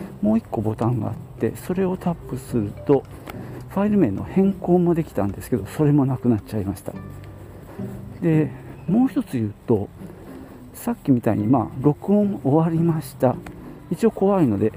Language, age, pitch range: Japanese, 50-69, 115-180 Hz